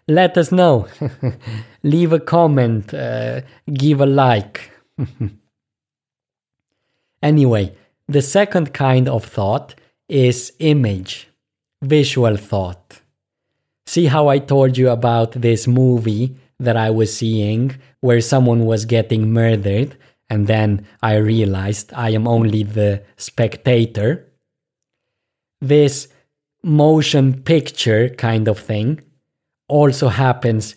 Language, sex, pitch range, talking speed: English, male, 110-140 Hz, 105 wpm